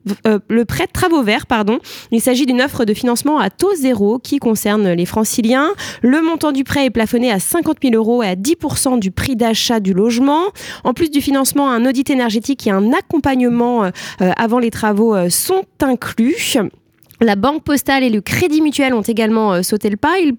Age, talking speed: 20-39, 205 wpm